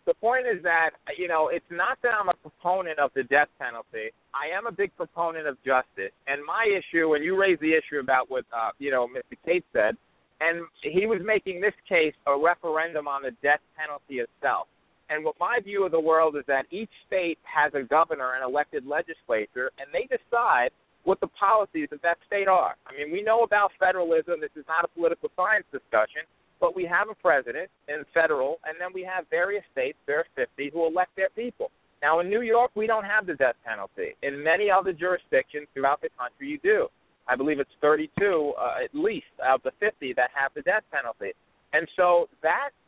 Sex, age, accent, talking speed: male, 50-69, American, 210 wpm